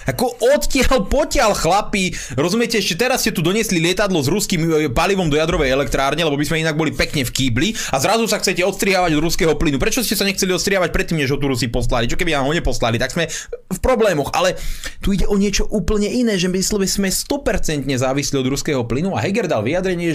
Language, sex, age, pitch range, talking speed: Slovak, male, 30-49, 120-195 Hz, 220 wpm